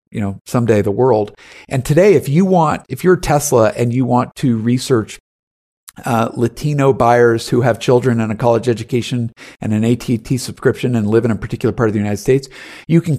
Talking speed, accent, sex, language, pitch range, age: 200 wpm, American, male, English, 110-130 Hz, 50-69